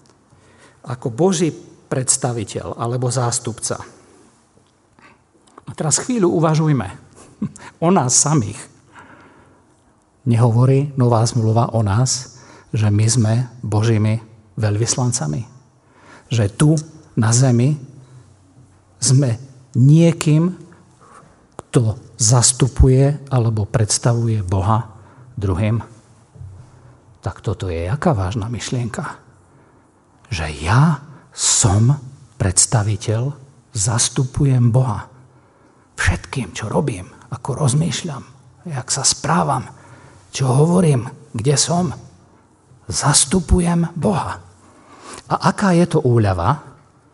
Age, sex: 50-69, male